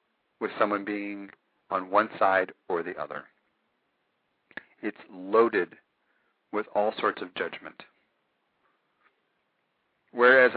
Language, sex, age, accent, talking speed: English, male, 50-69, American, 95 wpm